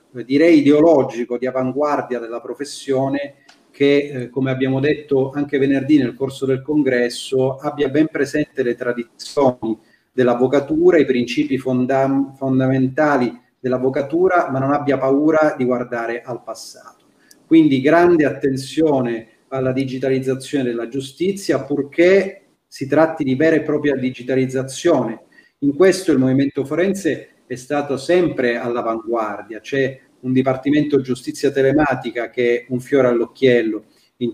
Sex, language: male, Italian